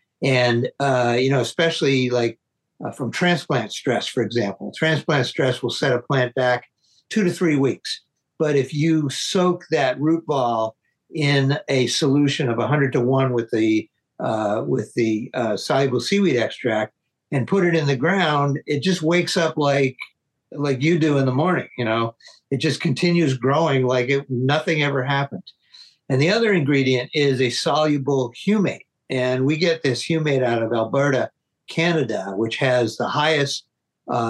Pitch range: 125-160 Hz